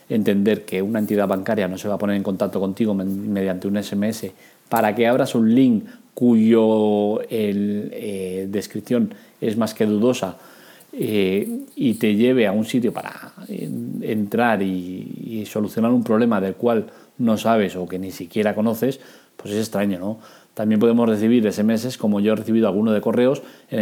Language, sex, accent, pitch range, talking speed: Spanish, male, Spanish, 100-120 Hz, 170 wpm